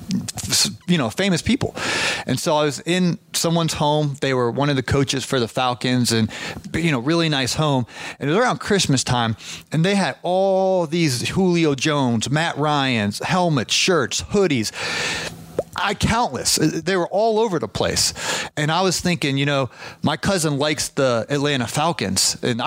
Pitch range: 135-185 Hz